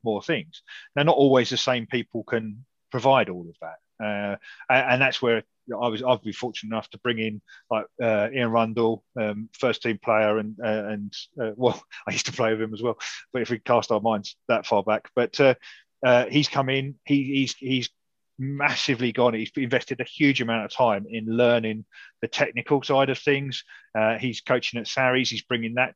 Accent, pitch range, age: British, 115-135 Hz, 30-49